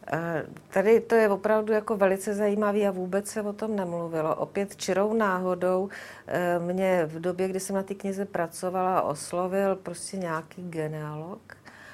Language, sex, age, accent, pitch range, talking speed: Czech, female, 50-69, native, 155-190 Hz, 145 wpm